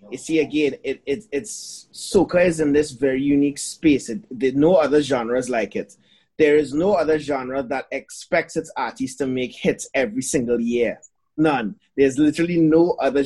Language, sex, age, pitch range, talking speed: English, male, 30-49, 130-165 Hz, 175 wpm